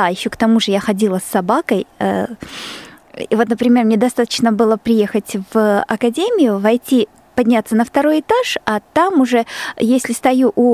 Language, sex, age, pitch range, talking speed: Russian, female, 20-39, 220-260 Hz, 155 wpm